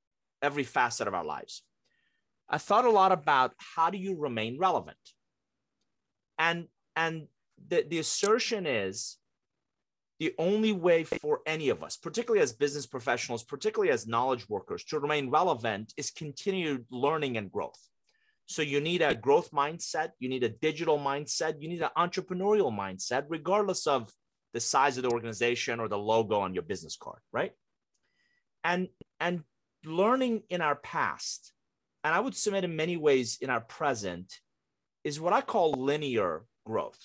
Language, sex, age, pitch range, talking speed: English, male, 30-49, 135-190 Hz, 155 wpm